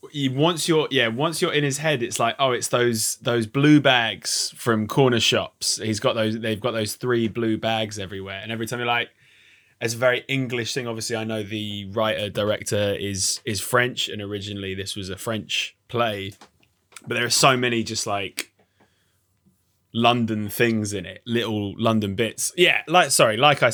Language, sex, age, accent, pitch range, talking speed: English, male, 20-39, British, 110-125 Hz, 185 wpm